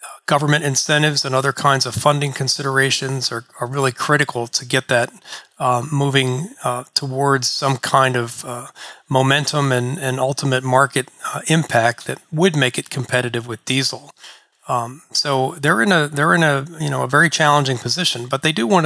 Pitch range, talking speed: 125-140 Hz, 175 wpm